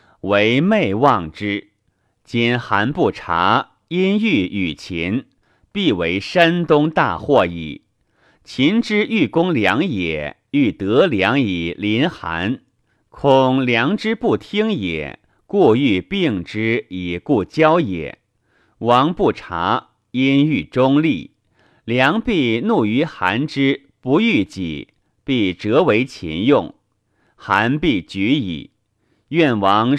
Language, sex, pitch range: Chinese, male, 105-170 Hz